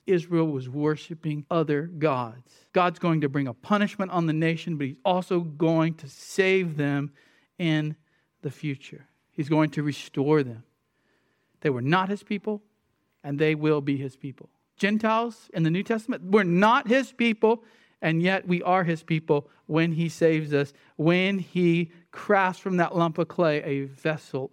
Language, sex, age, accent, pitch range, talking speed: English, male, 50-69, American, 145-185 Hz, 170 wpm